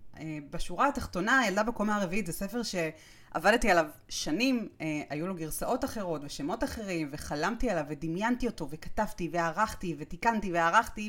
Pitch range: 170-250 Hz